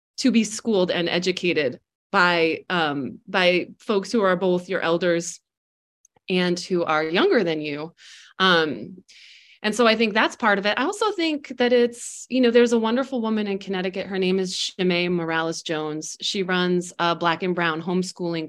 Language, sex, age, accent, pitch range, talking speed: English, female, 30-49, American, 170-225 Hz, 170 wpm